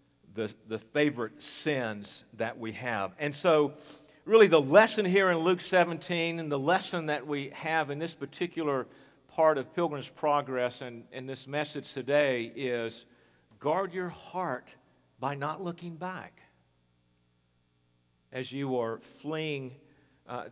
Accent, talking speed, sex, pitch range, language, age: American, 135 wpm, male, 130-175 Hz, English, 50-69